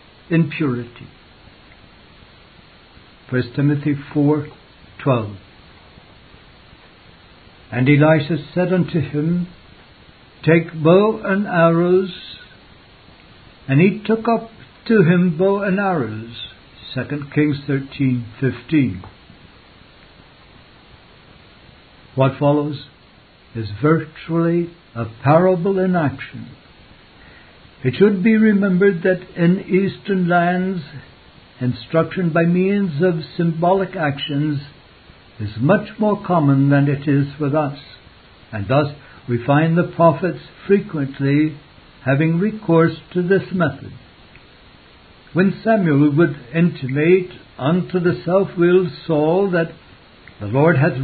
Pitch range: 135-180 Hz